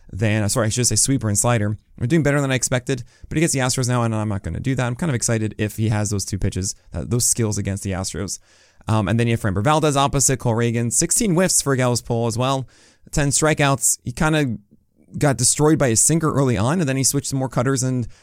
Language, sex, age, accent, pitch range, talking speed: English, male, 20-39, American, 110-135 Hz, 270 wpm